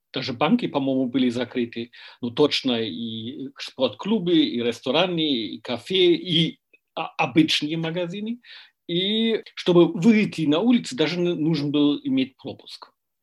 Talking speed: 120 wpm